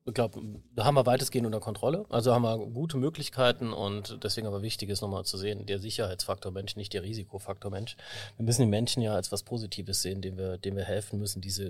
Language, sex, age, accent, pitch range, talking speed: German, male, 30-49, German, 100-120 Hz, 220 wpm